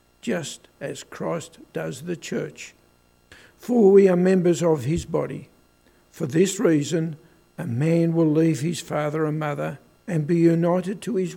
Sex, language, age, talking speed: male, English, 60-79, 155 wpm